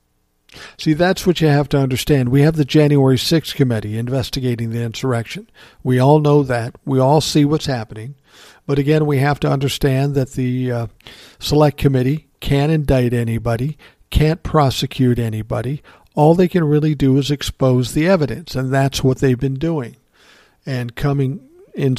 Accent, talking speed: American, 165 wpm